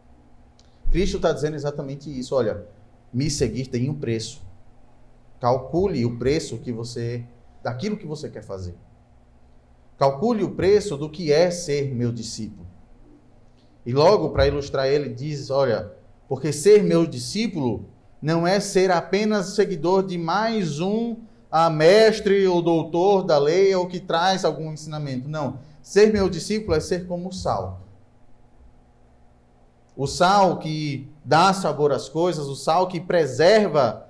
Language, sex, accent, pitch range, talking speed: Portuguese, male, Brazilian, 120-185 Hz, 140 wpm